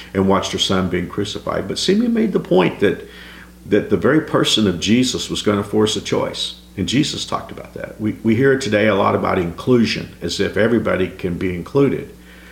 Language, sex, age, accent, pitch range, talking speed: English, male, 50-69, American, 85-110 Hz, 200 wpm